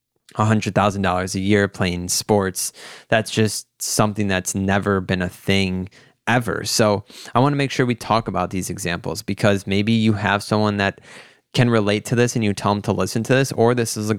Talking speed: 195 wpm